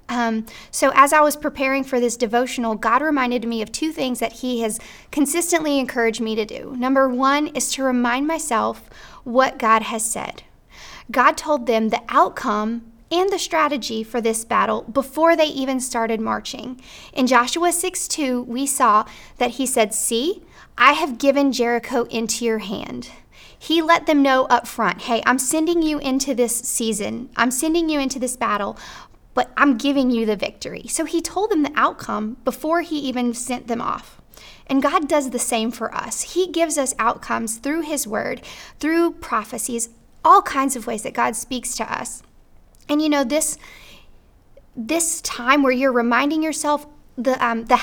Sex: female